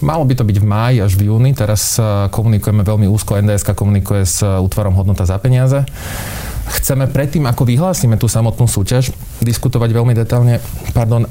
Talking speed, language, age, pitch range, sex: 165 wpm, Slovak, 30-49, 105-125 Hz, male